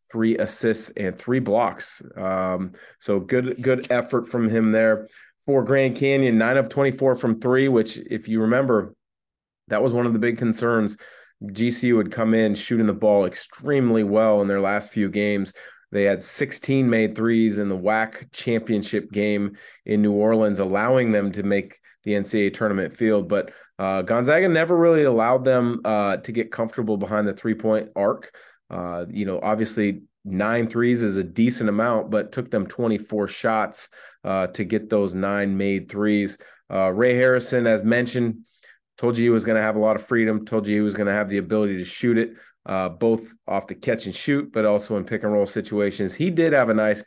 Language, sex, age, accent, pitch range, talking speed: English, male, 30-49, American, 100-120 Hz, 195 wpm